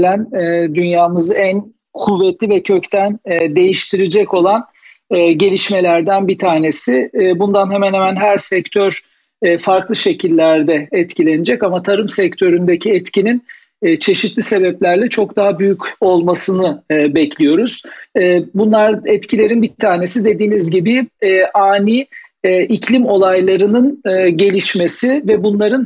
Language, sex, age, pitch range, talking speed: Turkish, male, 50-69, 175-220 Hz, 95 wpm